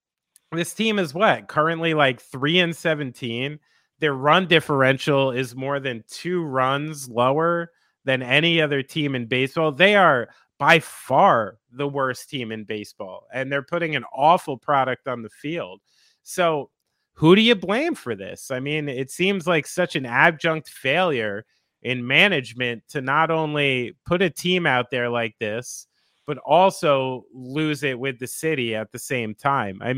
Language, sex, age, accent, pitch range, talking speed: English, male, 30-49, American, 125-165 Hz, 165 wpm